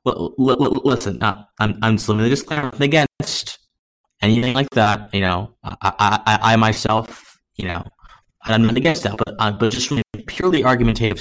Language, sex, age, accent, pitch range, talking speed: English, male, 20-39, American, 105-130 Hz, 160 wpm